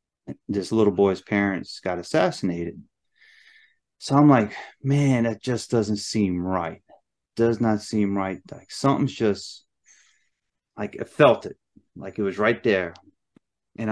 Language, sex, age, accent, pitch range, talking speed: English, male, 30-49, American, 95-110 Hz, 140 wpm